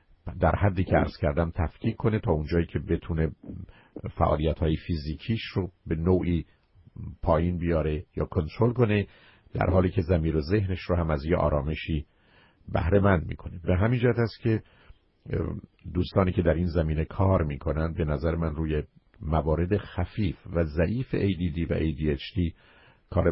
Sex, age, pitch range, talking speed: male, 50-69, 80-95 Hz, 155 wpm